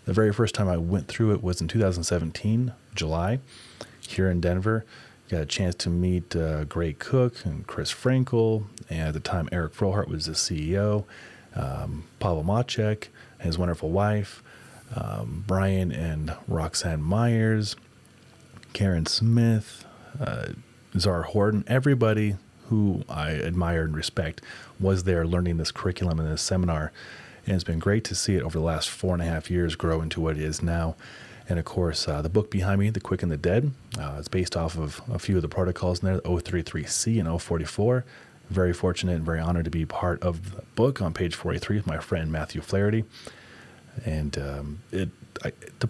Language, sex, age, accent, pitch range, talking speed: English, male, 30-49, American, 80-105 Hz, 185 wpm